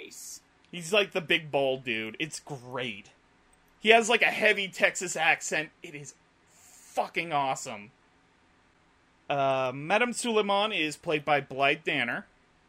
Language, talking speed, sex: English, 130 wpm, male